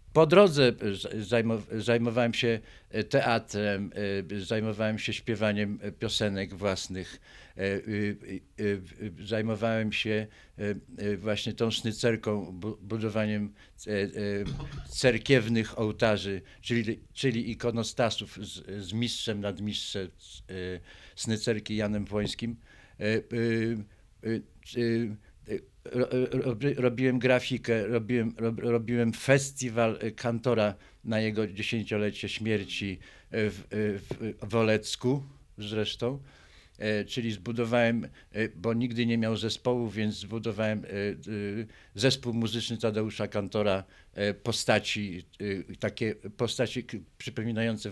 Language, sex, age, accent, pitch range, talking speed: Polish, male, 50-69, native, 105-120 Hz, 75 wpm